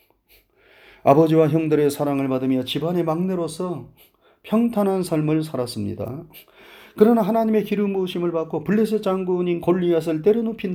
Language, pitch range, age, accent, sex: Korean, 125-180 Hz, 30-49, native, male